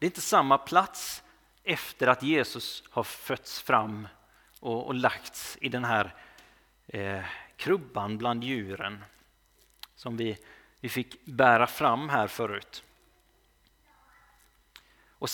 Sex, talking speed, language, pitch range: male, 105 wpm, Swedish, 120-155 Hz